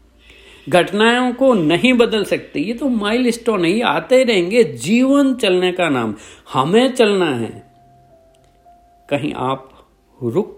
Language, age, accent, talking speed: Hindi, 50-69, native, 125 wpm